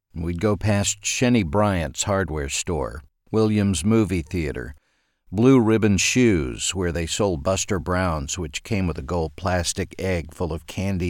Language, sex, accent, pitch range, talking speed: English, male, American, 85-115 Hz, 150 wpm